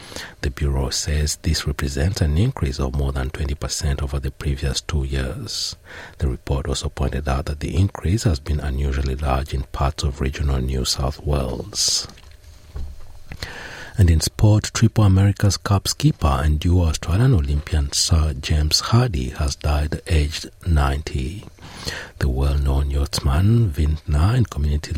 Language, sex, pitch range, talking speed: English, male, 70-85 Hz, 140 wpm